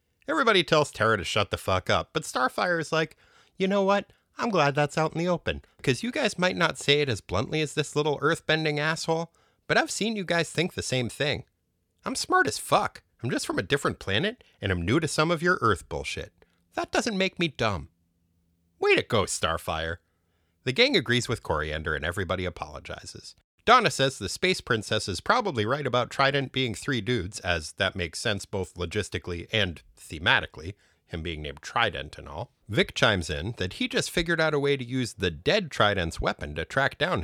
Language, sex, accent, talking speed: English, male, American, 205 wpm